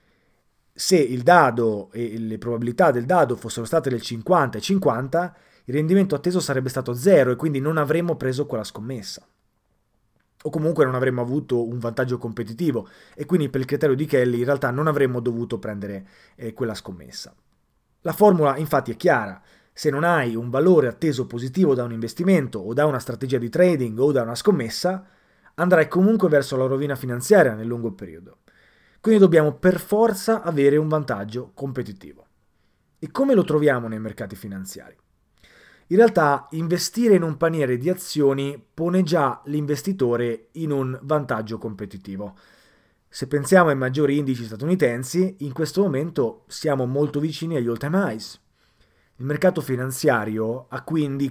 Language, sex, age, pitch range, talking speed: Italian, male, 30-49, 115-155 Hz, 160 wpm